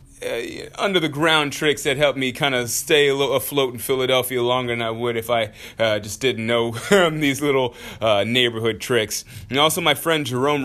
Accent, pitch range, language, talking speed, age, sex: American, 125-155 Hz, English, 190 wpm, 20-39, male